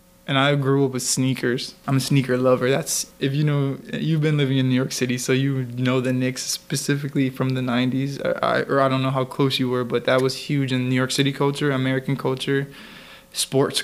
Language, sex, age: English, male, 20-39